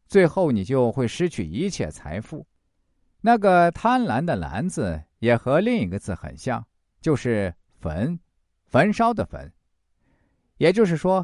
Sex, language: male, Chinese